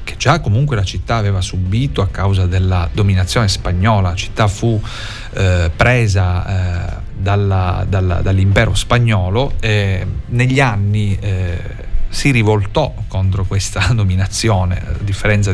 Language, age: Italian, 40-59